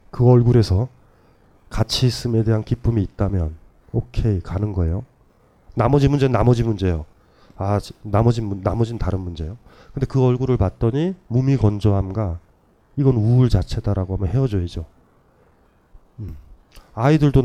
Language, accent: Korean, native